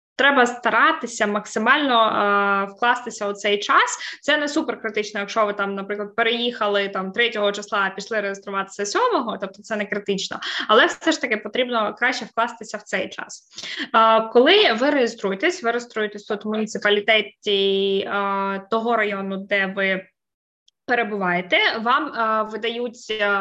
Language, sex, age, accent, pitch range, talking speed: Ukrainian, female, 20-39, native, 205-255 Hz, 140 wpm